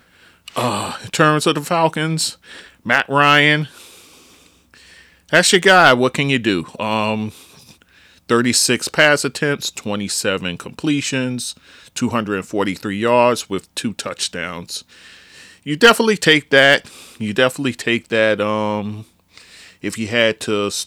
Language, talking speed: English, 110 wpm